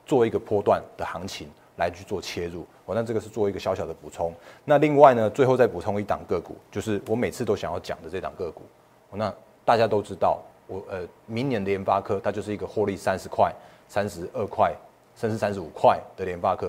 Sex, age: male, 30-49